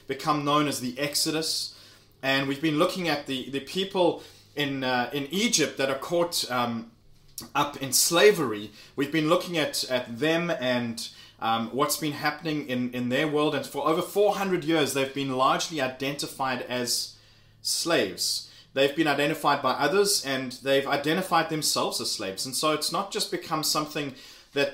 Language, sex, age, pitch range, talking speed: English, male, 20-39, 125-160 Hz, 165 wpm